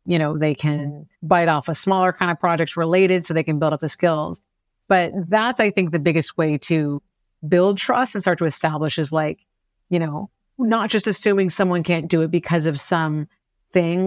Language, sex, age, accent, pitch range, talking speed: English, female, 30-49, American, 160-195 Hz, 205 wpm